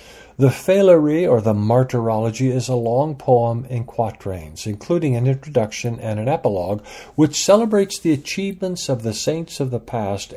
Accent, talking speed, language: American, 155 wpm, English